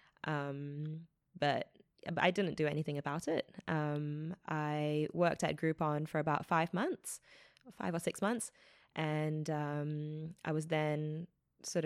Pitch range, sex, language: 150-170 Hz, female, English